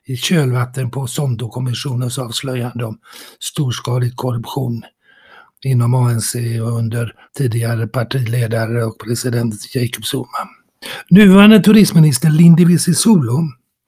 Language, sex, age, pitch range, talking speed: English, male, 60-79, 125-170 Hz, 100 wpm